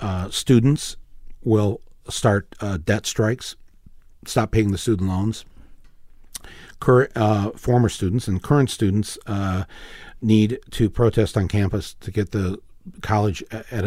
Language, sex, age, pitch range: English, male, 50-69, 100-135 Hz